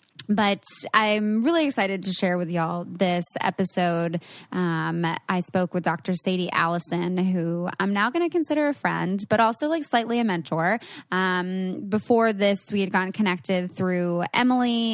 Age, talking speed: 20-39, 160 wpm